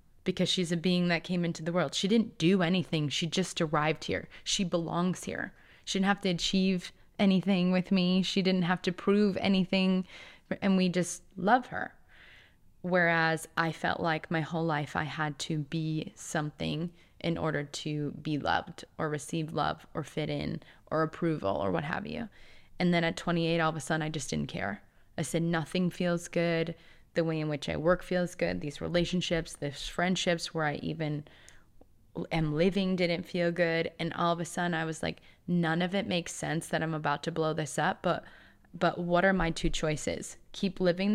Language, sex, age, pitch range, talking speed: English, female, 20-39, 155-180 Hz, 195 wpm